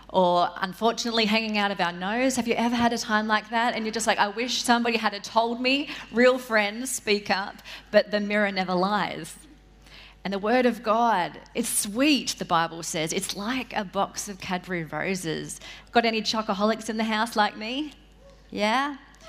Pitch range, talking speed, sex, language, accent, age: 185-235 Hz, 185 wpm, female, English, Australian, 30-49